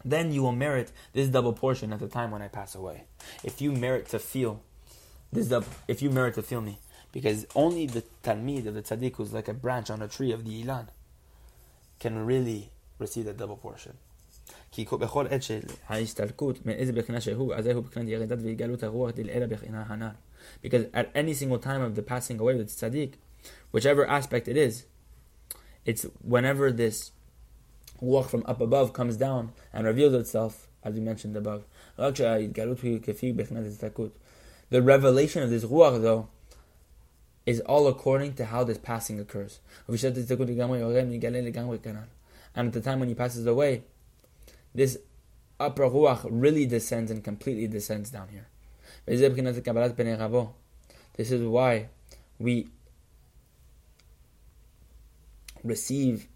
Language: English